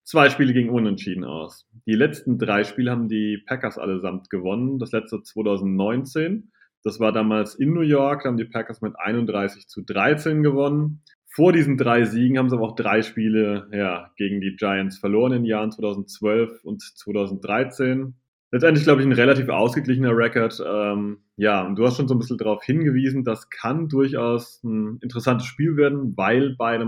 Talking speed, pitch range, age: 180 wpm, 105-130 Hz, 30-49